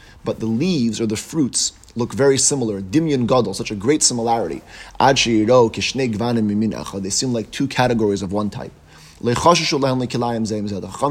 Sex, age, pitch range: male, 30-49, 105-135 Hz